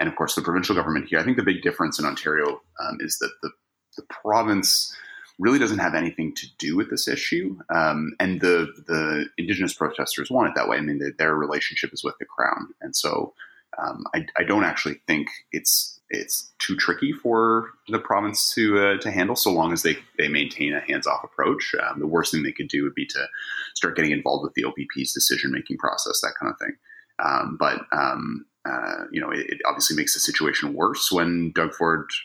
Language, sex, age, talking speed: English, male, 30-49, 210 wpm